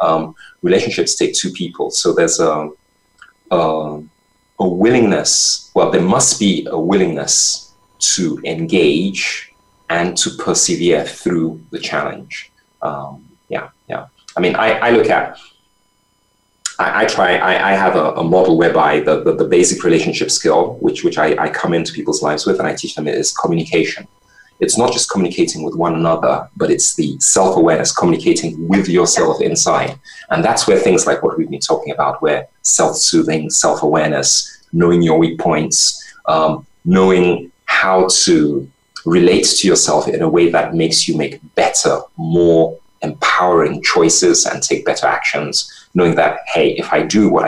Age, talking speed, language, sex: 30-49, 160 wpm, English, male